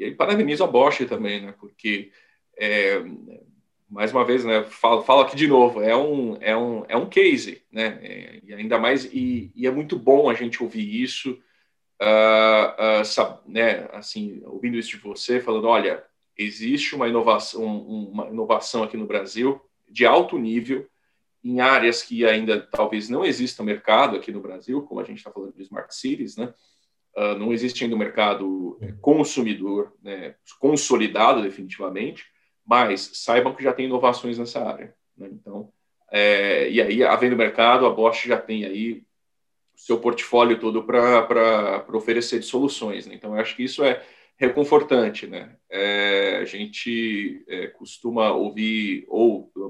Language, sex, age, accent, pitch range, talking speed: Portuguese, male, 40-59, Brazilian, 105-125 Hz, 160 wpm